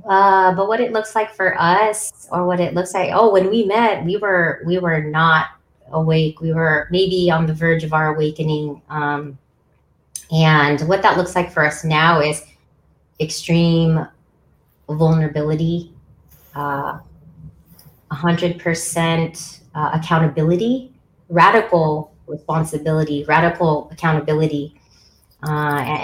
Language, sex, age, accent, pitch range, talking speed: English, female, 30-49, American, 150-175 Hz, 120 wpm